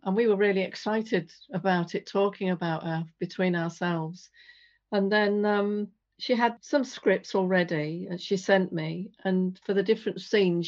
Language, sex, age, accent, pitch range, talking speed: English, female, 50-69, British, 170-200 Hz, 165 wpm